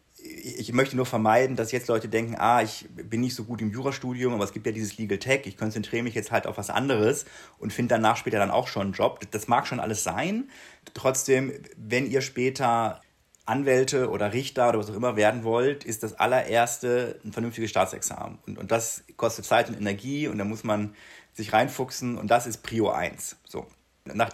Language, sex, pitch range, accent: German, male, 110-130 Hz, German